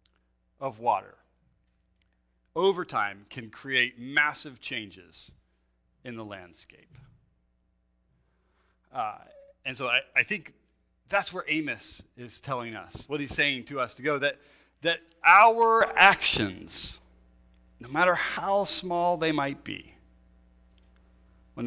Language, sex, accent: English, male, American